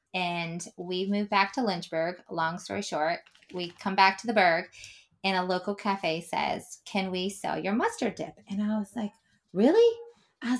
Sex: female